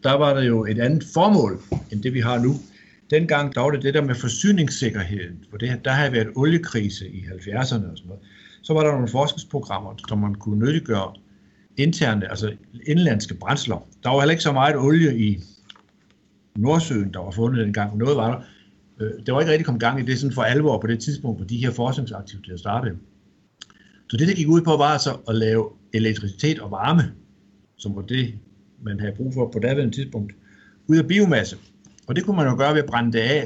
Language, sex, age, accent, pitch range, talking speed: Danish, male, 60-79, native, 100-145 Hz, 210 wpm